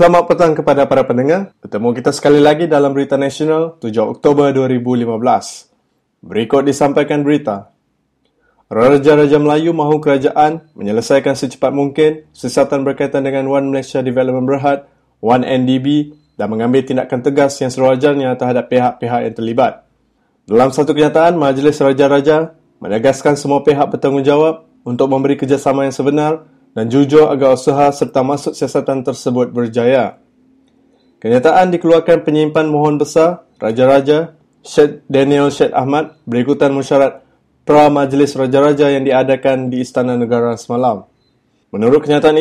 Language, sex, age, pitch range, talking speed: English, male, 20-39, 130-150 Hz, 125 wpm